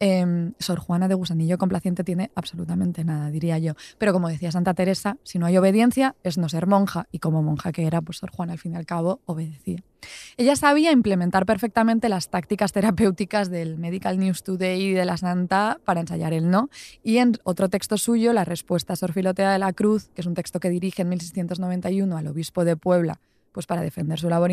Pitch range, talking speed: 175-205 Hz, 210 wpm